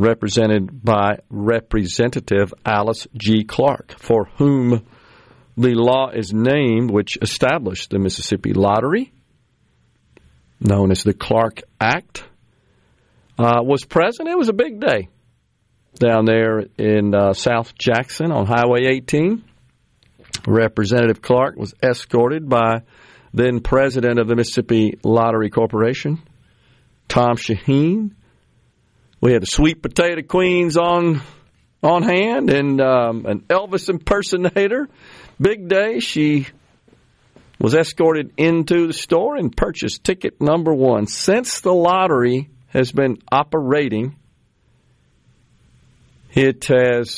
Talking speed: 110 wpm